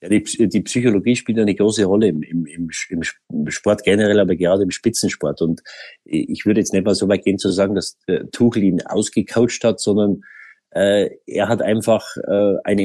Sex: male